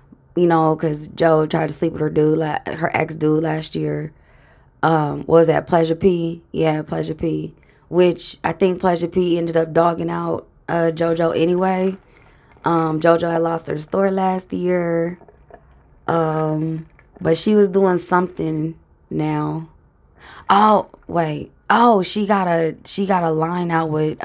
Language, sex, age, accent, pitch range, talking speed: English, female, 20-39, American, 155-185 Hz, 155 wpm